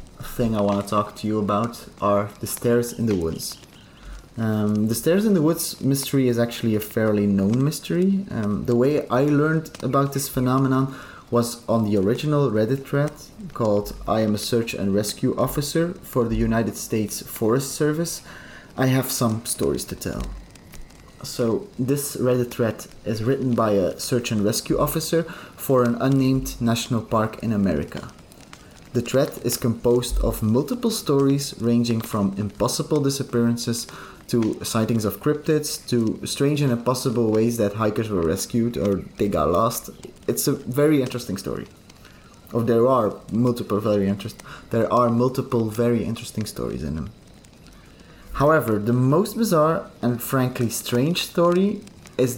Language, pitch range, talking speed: English, 110-140 Hz, 155 wpm